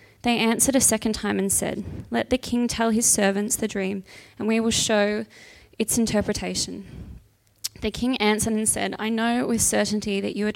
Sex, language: female, English